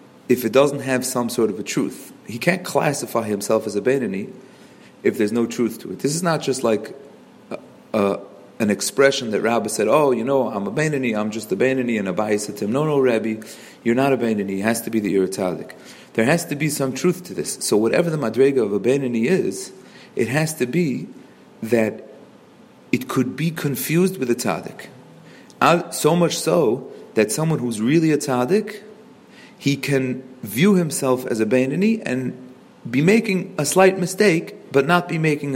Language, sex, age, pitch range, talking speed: English, male, 40-59, 110-155 Hz, 195 wpm